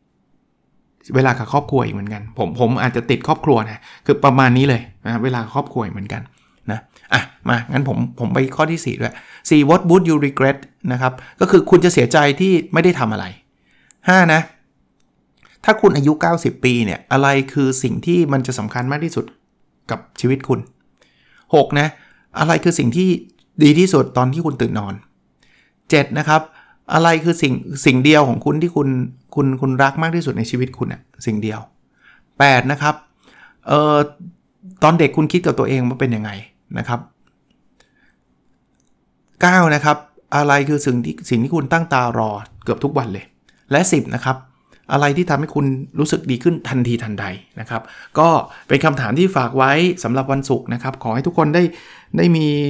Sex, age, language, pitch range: male, 60-79, Thai, 125-155 Hz